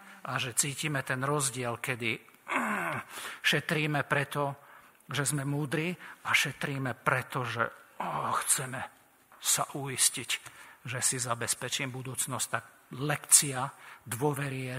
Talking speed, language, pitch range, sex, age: 100 wpm, Slovak, 130-155 Hz, male, 50-69